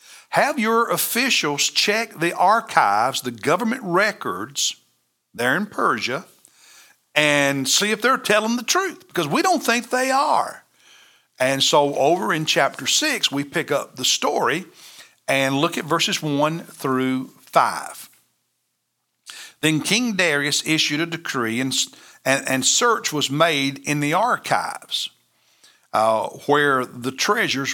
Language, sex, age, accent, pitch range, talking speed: English, male, 60-79, American, 130-170 Hz, 135 wpm